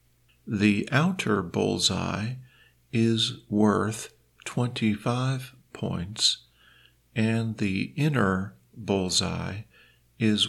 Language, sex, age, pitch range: Thai, male, 50-69, 95-120 Hz